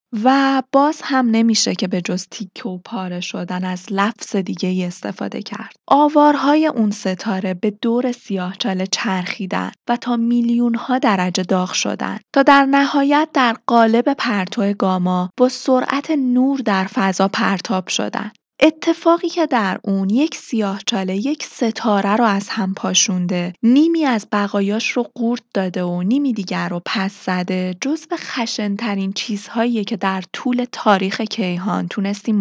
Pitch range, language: 190-255 Hz, Persian